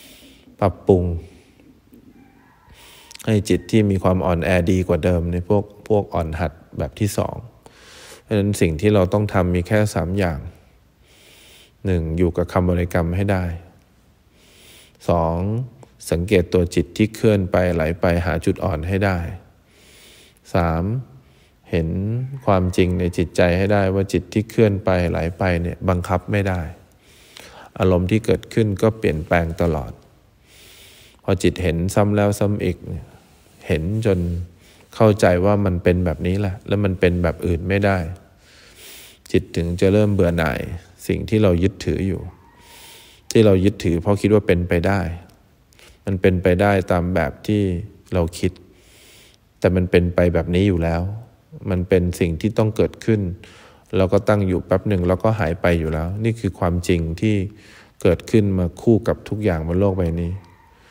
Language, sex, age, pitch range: English, male, 20-39, 85-100 Hz